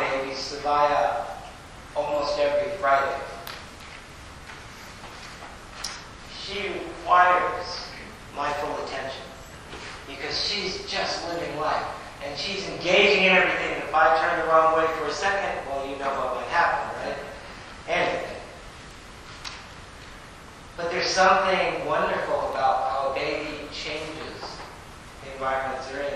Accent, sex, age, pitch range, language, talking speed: American, male, 40-59, 145-190 Hz, English, 115 wpm